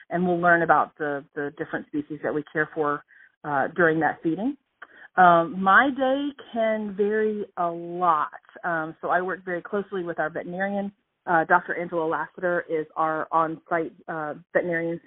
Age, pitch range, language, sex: 40-59, 155-175 Hz, English, female